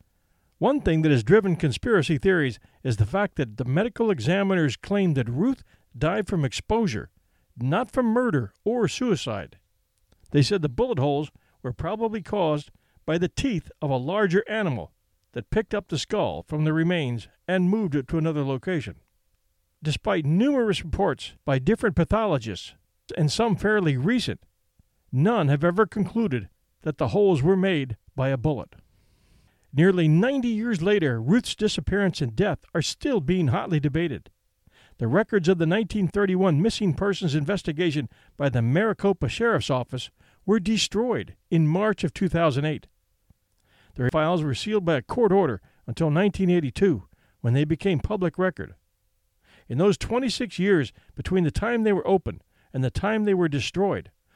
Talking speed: 155 wpm